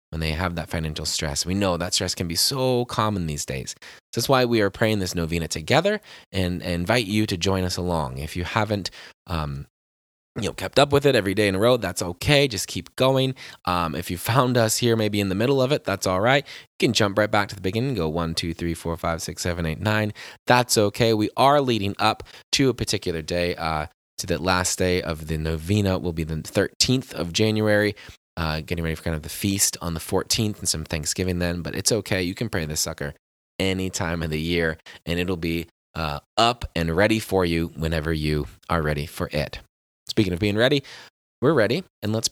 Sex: male